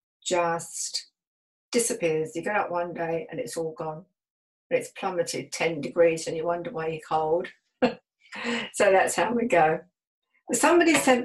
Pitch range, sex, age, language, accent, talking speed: 170-255 Hz, female, 60-79, English, British, 155 wpm